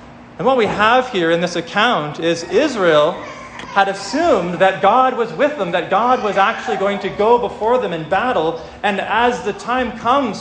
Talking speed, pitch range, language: 190 wpm, 165-230 Hz, English